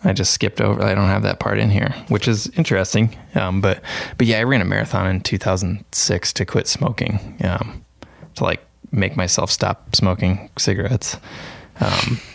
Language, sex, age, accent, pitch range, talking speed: English, male, 20-39, American, 95-110 Hz, 175 wpm